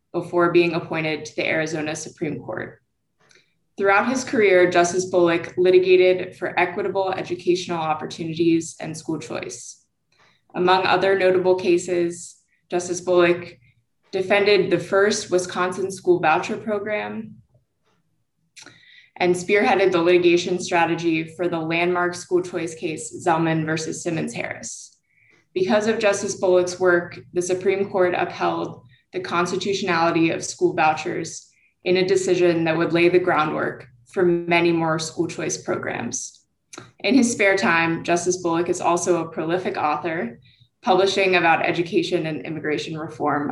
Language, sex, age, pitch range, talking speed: English, female, 20-39, 165-185 Hz, 130 wpm